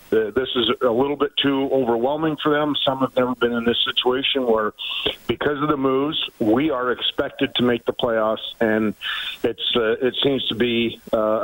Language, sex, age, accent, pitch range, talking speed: English, male, 50-69, American, 115-150 Hz, 190 wpm